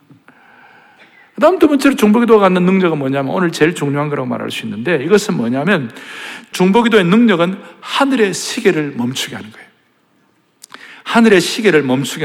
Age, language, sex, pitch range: 60-79, Korean, male, 185-270 Hz